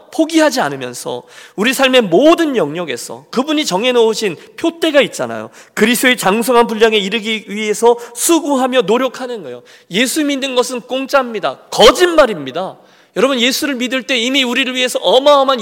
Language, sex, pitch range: Korean, male, 180-255 Hz